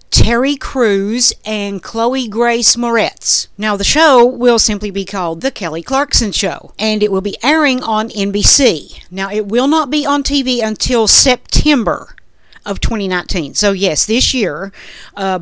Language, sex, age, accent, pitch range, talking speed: English, female, 50-69, American, 195-240 Hz, 155 wpm